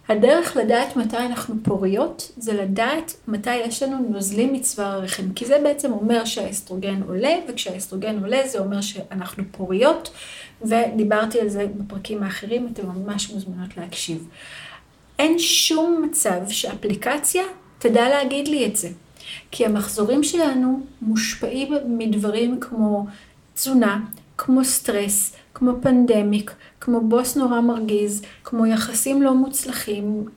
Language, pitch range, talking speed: Hebrew, 210-265 Hz, 125 wpm